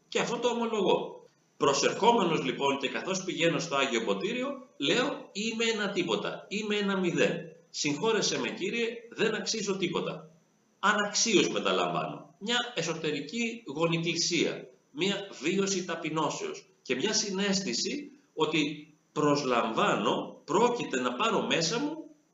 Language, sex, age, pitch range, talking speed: Greek, male, 40-59, 160-245 Hz, 115 wpm